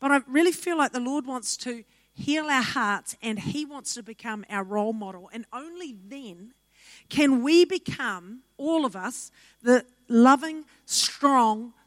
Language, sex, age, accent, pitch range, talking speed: English, female, 50-69, Australian, 200-255 Hz, 160 wpm